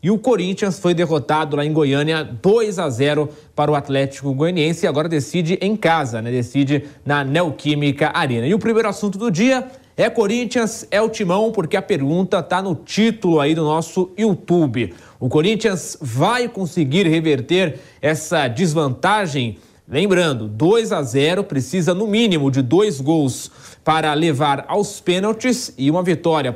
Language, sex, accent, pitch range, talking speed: English, male, Brazilian, 145-195 Hz, 160 wpm